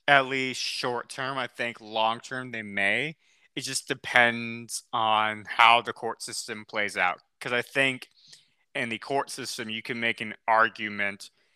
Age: 20-39